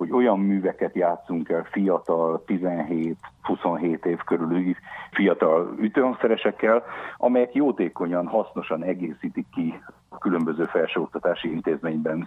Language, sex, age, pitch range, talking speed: Hungarian, male, 50-69, 85-105 Hz, 100 wpm